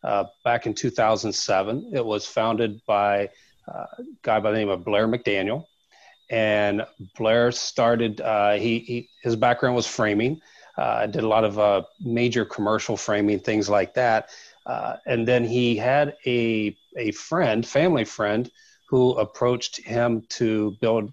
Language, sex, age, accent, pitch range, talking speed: English, male, 40-59, American, 110-135 Hz, 155 wpm